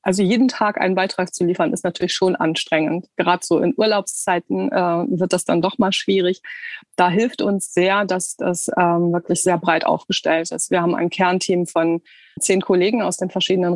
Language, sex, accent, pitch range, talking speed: German, female, German, 170-195 Hz, 190 wpm